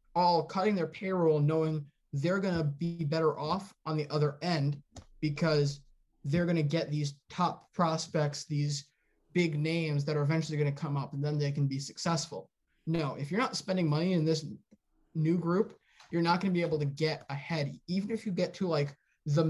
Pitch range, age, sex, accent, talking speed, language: 150-175 Hz, 20-39, male, American, 200 wpm, English